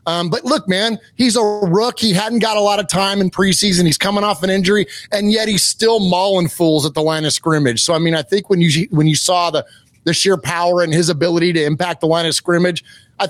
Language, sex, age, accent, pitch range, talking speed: English, male, 30-49, American, 155-190 Hz, 255 wpm